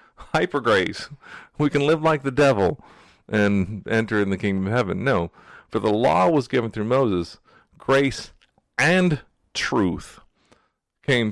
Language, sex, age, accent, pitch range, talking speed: English, male, 40-59, American, 95-125 Hz, 145 wpm